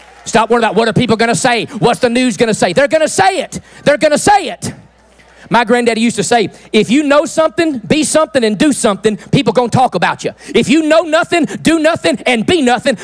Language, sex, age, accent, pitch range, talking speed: English, male, 40-59, American, 185-310 Hz, 250 wpm